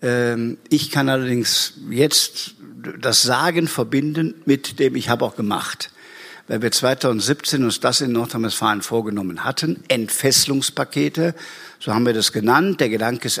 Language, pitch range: German, 120-160 Hz